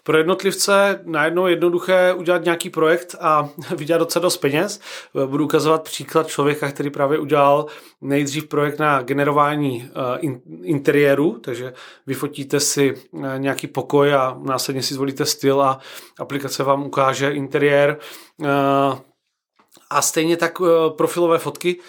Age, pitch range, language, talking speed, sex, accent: 30-49, 135-160 Hz, Czech, 120 wpm, male, native